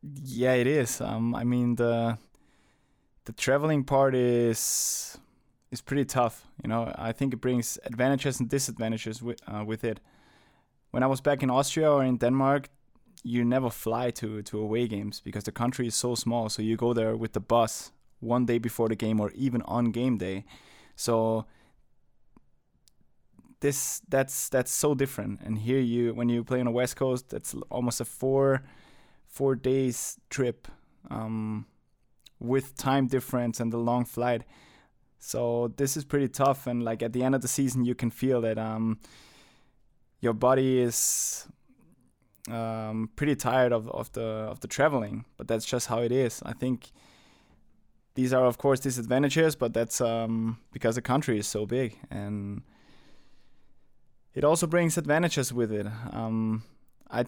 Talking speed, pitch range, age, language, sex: 165 wpm, 115-130 Hz, 20-39, English, male